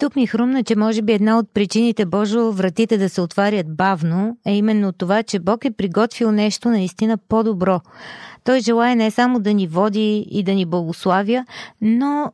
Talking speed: 180 wpm